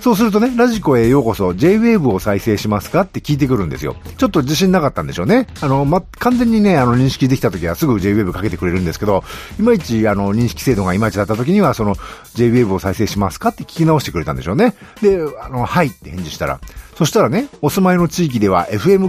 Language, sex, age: Japanese, male, 50-69